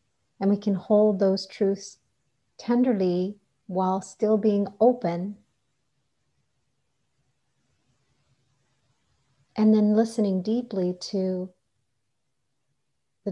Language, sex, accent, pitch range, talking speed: English, female, American, 135-205 Hz, 75 wpm